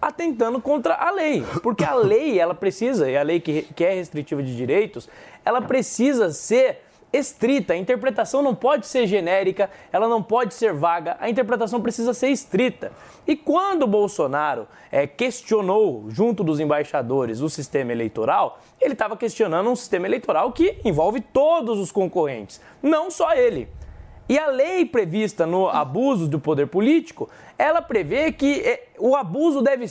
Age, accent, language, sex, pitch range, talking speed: 20-39, Brazilian, Portuguese, male, 190-310 Hz, 155 wpm